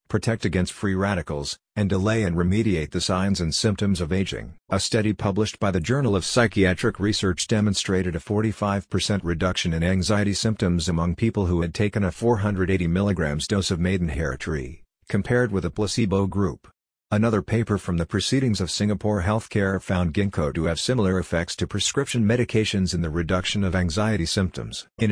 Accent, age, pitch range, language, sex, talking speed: American, 50-69, 90-105 Hz, English, male, 170 wpm